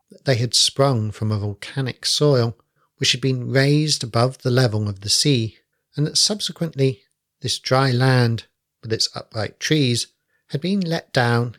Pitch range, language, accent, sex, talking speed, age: 110-140 Hz, English, British, male, 165 wpm, 50-69